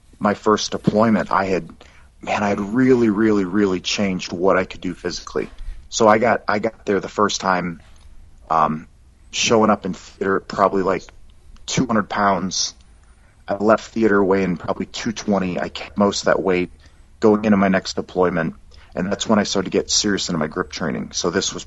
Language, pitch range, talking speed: English, 85-105 Hz, 185 wpm